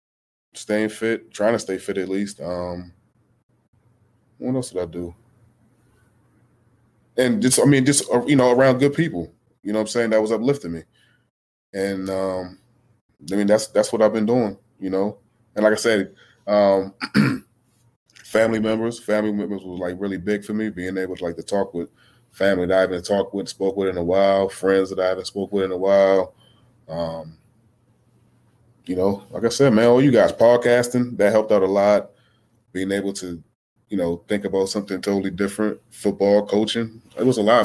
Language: English